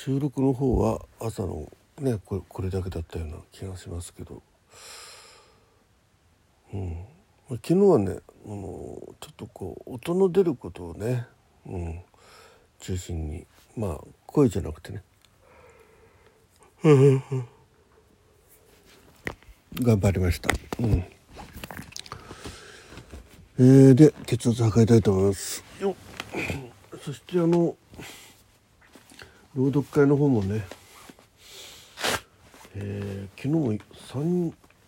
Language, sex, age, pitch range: Japanese, male, 60-79, 95-145 Hz